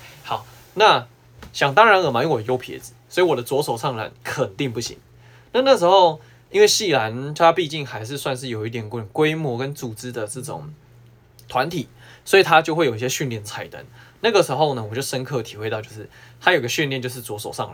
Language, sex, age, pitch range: Chinese, male, 20-39, 115-140 Hz